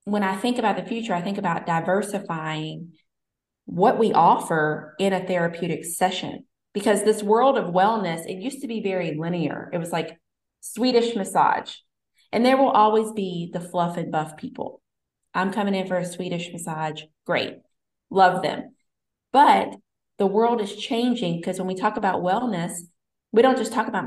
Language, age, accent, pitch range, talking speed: English, 30-49, American, 170-220 Hz, 170 wpm